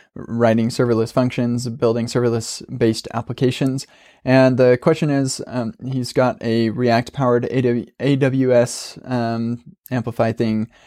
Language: English